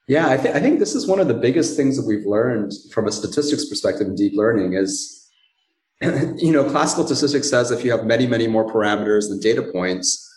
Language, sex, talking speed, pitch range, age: English, male, 220 wpm, 105-140 Hz, 30-49